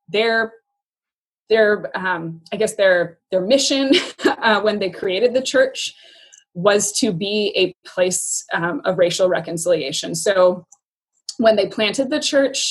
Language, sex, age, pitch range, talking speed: English, female, 20-39, 185-260 Hz, 135 wpm